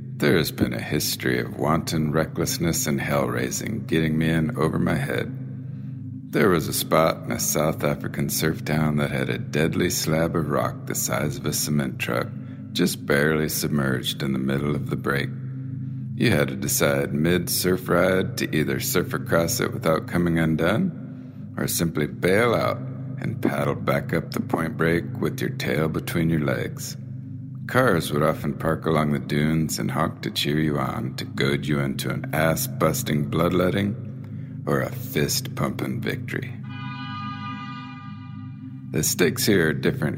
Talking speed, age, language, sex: 160 wpm, 50-69, English, male